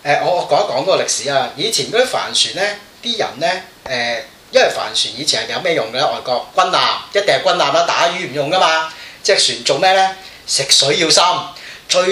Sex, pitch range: male, 145-225 Hz